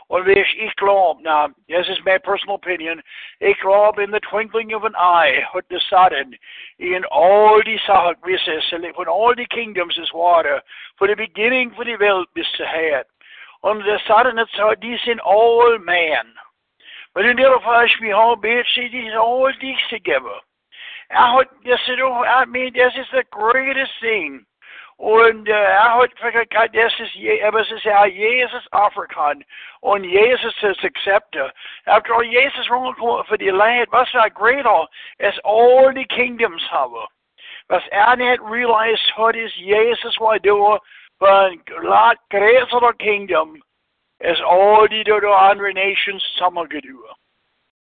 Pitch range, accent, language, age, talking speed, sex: 200-245 Hz, American, English, 60-79, 140 wpm, male